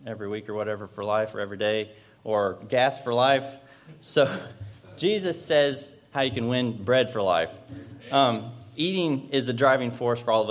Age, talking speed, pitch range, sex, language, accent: 30-49, 185 wpm, 110-135 Hz, male, English, American